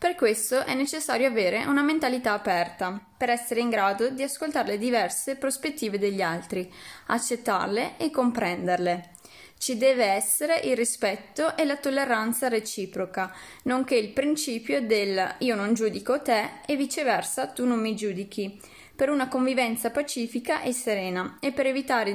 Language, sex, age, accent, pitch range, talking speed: Italian, female, 20-39, native, 210-270 Hz, 145 wpm